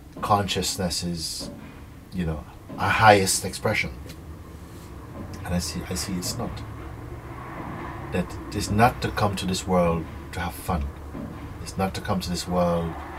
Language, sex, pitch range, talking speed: English, male, 80-95 Hz, 145 wpm